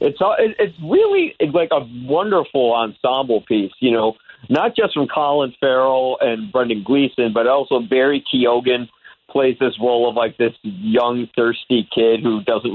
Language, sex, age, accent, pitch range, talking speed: English, male, 40-59, American, 115-145 Hz, 155 wpm